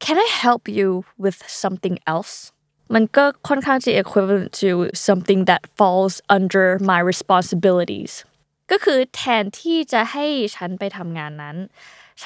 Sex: female